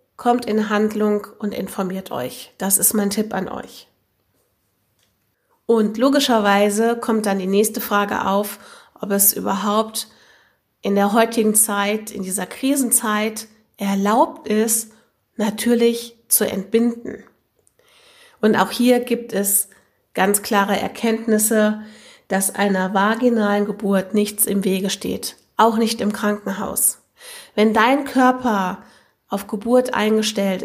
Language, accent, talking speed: German, German, 120 wpm